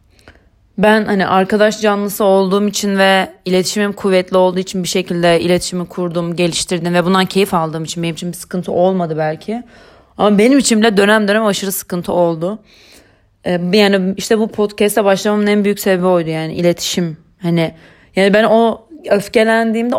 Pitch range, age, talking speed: 180-215 Hz, 30-49, 155 wpm